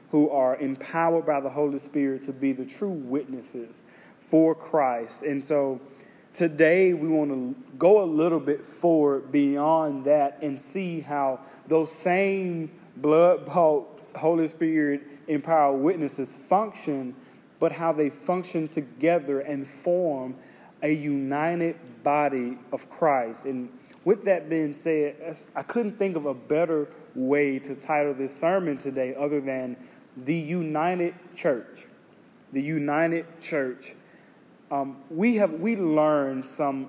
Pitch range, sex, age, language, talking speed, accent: 140-170 Hz, male, 30-49, English, 130 wpm, American